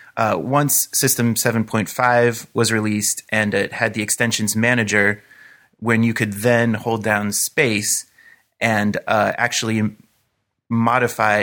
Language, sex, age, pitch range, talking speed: English, male, 30-49, 105-130 Hz, 120 wpm